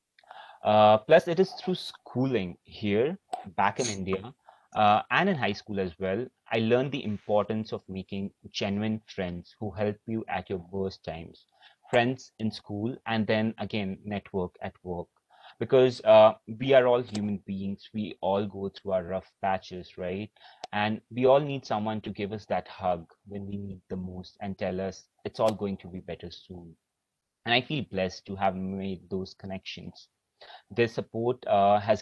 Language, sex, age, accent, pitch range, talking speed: English, male, 30-49, Indian, 95-110 Hz, 175 wpm